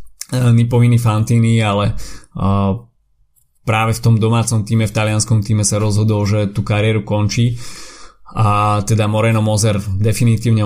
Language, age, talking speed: Slovak, 20-39, 125 wpm